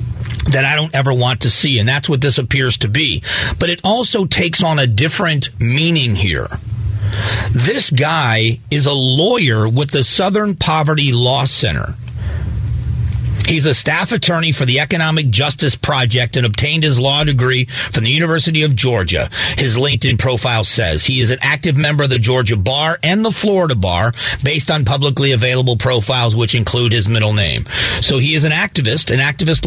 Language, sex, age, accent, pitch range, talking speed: English, male, 40-59, American, 120-150 Hz, 175 wpm